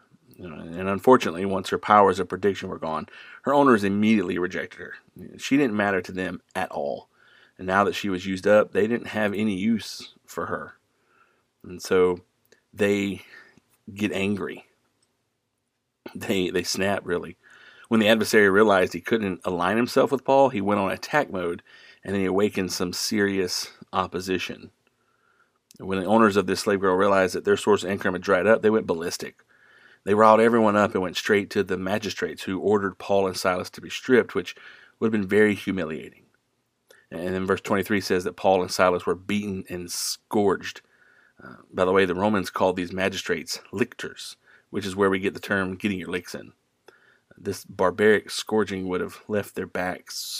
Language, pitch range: English, 95-110 Hz